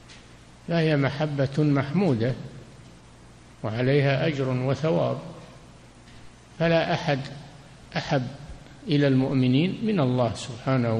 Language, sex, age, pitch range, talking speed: Arabic, male, 60-79, 115-140 Hz, 75 wpm